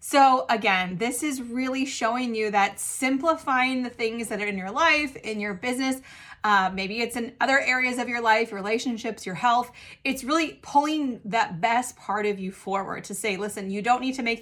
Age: 30-49